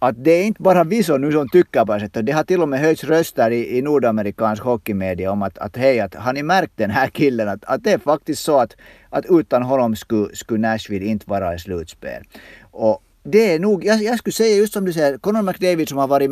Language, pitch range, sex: Swedish, 110-155 Hz, male